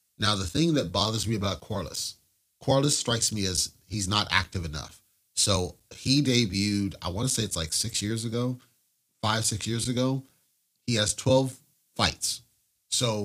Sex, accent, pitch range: male, American, 95-125 Hz